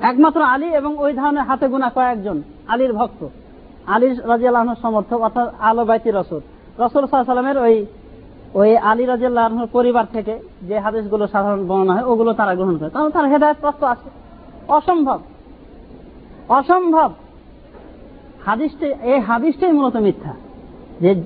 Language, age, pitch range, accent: Bengali, 40-59, 225-285 Hz, native